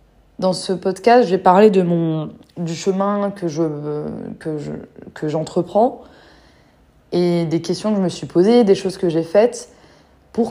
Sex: female